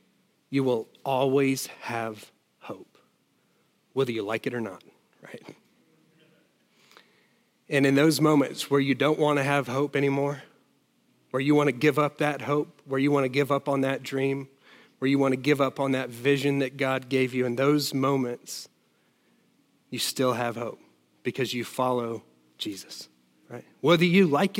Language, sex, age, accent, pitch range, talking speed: English, male, 40-59, American, 135-170 Hz, 170 wpm